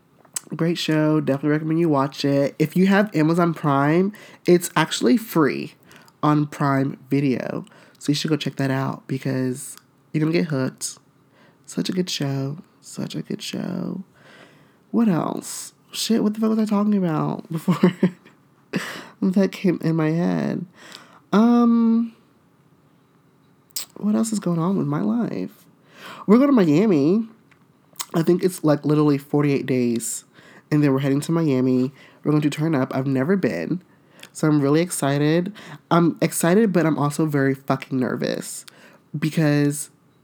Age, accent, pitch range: 20-39, American, 145-190 Hz